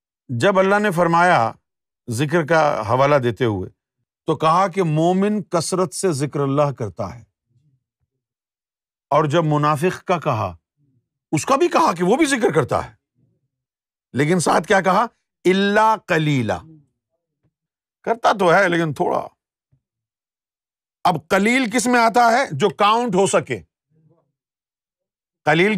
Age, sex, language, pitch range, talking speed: 50-69, male, Urdu, 130-200 Hz, 130 wpm